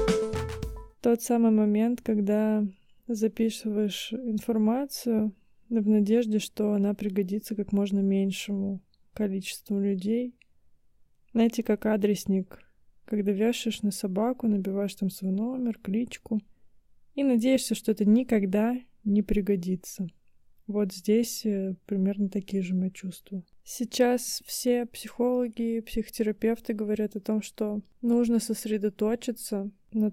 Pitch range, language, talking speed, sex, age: 200-225 Hz, Russian, 105 wpm, female, 20-39